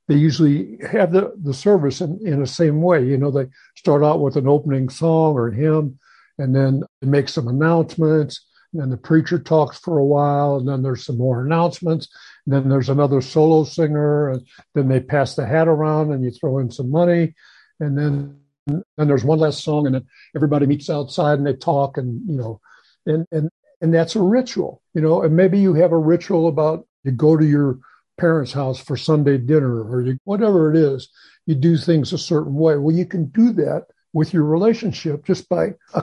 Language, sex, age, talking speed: English, male, 60-79, 210 wpm